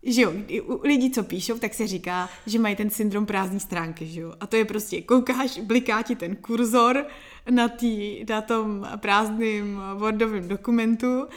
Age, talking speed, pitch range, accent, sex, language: 20-39, 170 wpm, 205-240 Hz, native, female, Czech